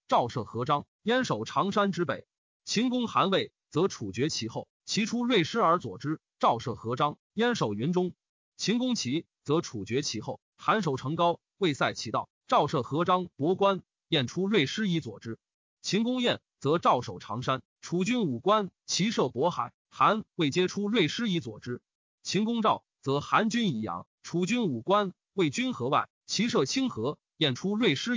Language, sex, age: Chinese, male, 30-49